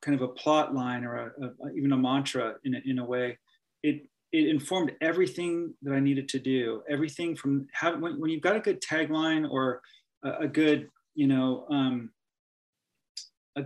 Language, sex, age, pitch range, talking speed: English, male, 30-49, 135-160 Hz, 170 wpm